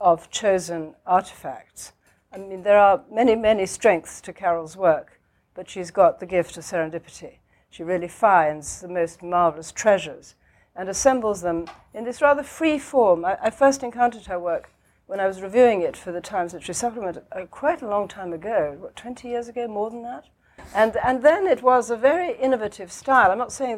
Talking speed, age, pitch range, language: 190 wpm, 60-79, 185-240 Hz, English